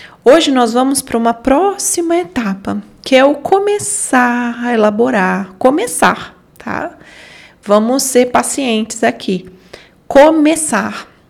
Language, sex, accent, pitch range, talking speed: Portuguese, female, Brazilian, 210-280 Hz, 105 wpm